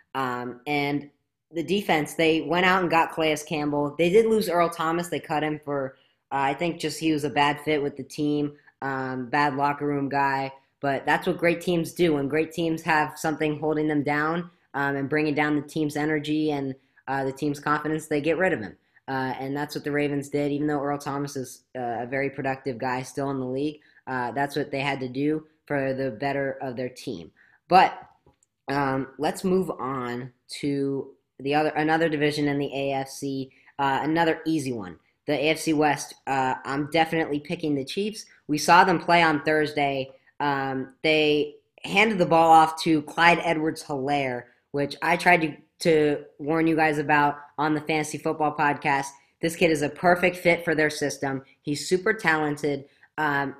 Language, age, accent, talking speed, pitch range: English, 10-29, American, 190 wpm, 140-160 Hz